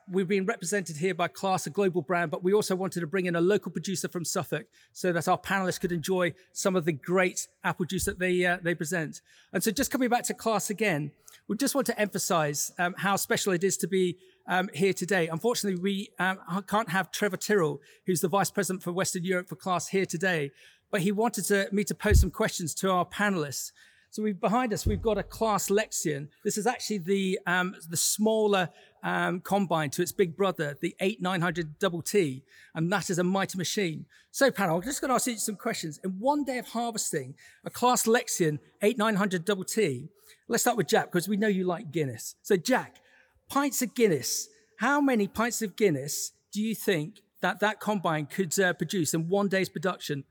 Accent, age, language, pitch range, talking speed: British, 40-59, English, 175-210 Hz, 210 wpm